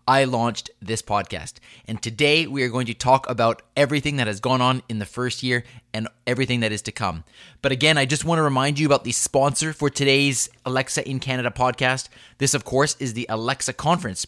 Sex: male